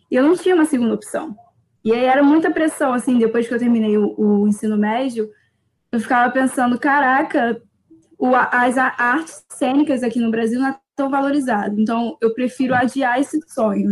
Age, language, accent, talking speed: 10-29, Portuguese, Brazilian, 175 wpm